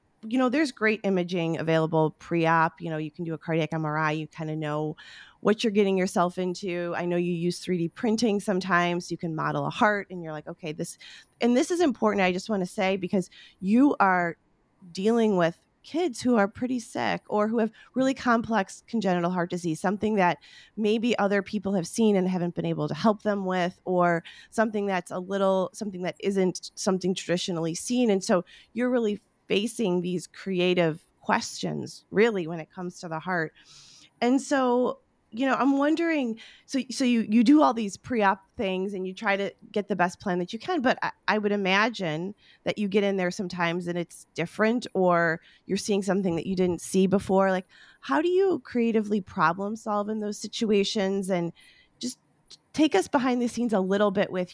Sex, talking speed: female, 195 wpm